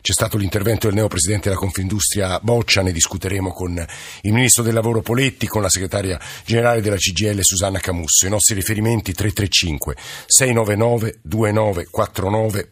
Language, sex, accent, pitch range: Italian, male, native, 90-115 Hz